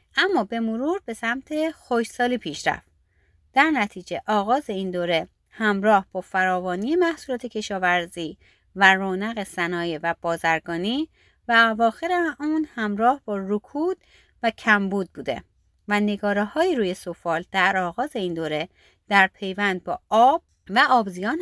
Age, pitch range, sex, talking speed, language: 30-49, 180-250 Hz, female, 130 wpm, Persian